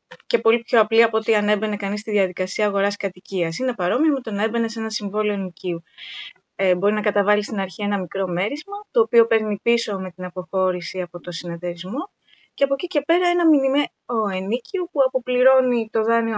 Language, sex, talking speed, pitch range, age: Greek, female, 190 wpm, 210-270 Hz, 20-39